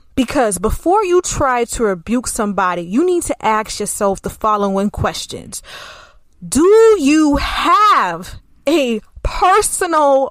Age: 20-39